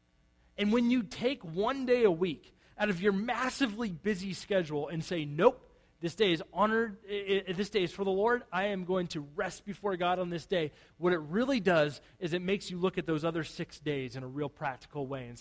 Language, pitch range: English, 130-190 Hz